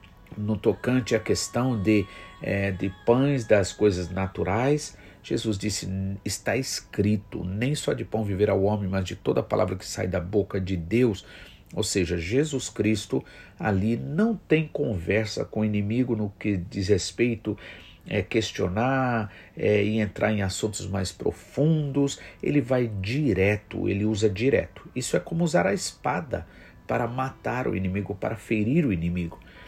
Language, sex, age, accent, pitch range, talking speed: Portuguese, male, 50-69, Brazilian, 95-120 Hz, 155 wpm